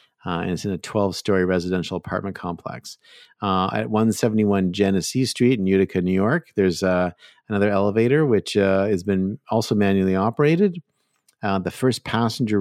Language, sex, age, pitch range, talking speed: English, male, 50-69, 90-110 Hz, 155 wpm